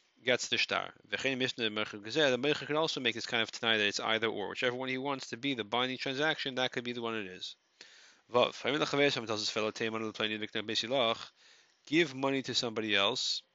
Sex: male